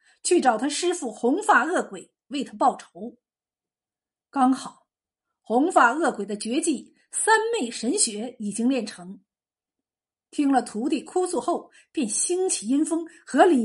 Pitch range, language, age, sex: 240-345 Hz, Chinese, 50-69, female